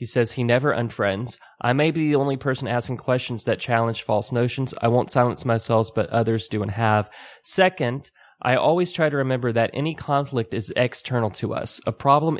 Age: 20-39